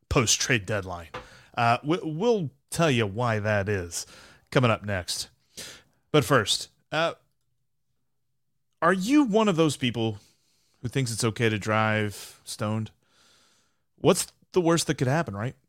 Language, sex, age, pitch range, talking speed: English, male, 30-49, 105-155 Hz, 135 wpm